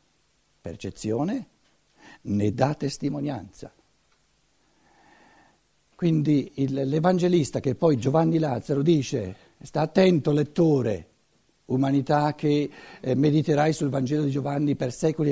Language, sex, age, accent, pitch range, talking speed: Italian, male, 60-79, native, 130-180 Hz, 95 wpm